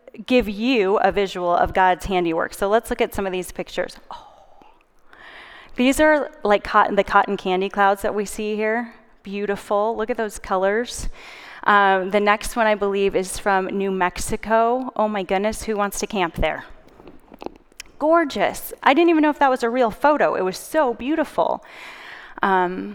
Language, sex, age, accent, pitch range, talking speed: English, female, 10-29, American, 190-245 Hz, 175 wpm